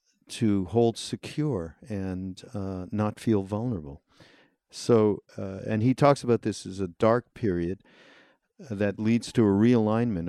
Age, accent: 50-69, American